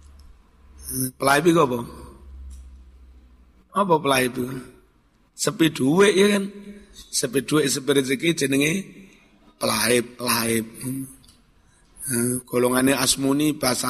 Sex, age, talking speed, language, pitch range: male, 60-79, 80 wpm, Indonesian, 130-190 Hz